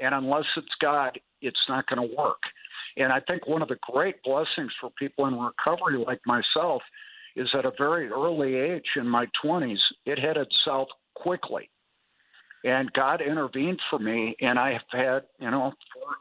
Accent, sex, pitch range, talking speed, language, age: American, male, 135-185 Hz, 175 wpm, English, 50-69